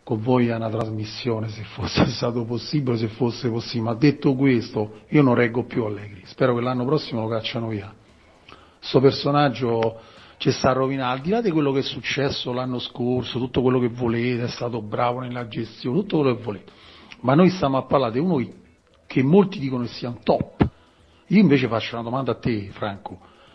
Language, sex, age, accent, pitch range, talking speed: Italian, male, 40-59, native, 115-140 Hz, 200 wpm